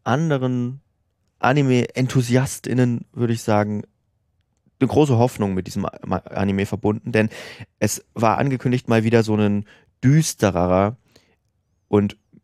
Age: 30-49